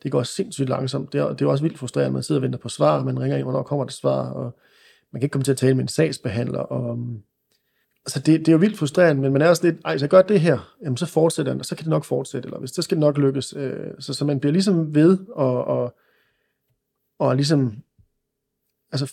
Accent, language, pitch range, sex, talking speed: native, Danish, 130-155 Hz, male, 255 wpm